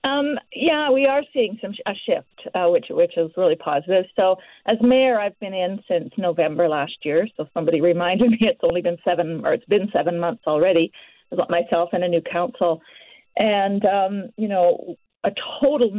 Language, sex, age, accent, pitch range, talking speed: English, female, 40-59, American, 175-240 Hz, 185 wpm